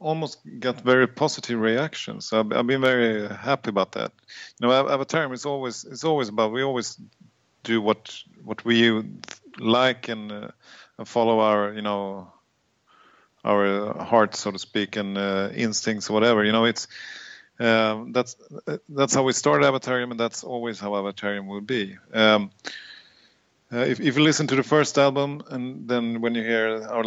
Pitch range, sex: 110-130 Hz, male